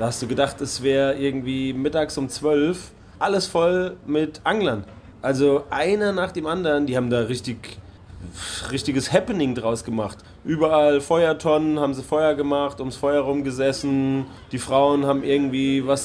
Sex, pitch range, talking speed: male, 115-140 Hz, 155 wpm